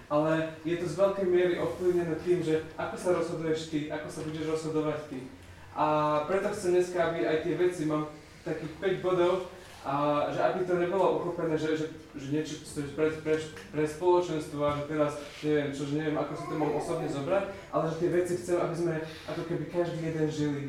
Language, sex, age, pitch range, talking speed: Slovak, male, 20-39, 145-170 Hz, 195 wpm